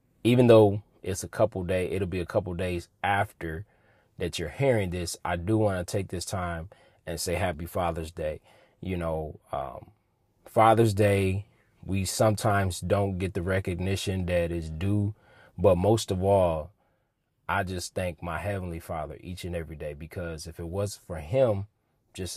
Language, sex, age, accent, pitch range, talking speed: English, male, 20-39, American, 90-110 Hz, 170 wpm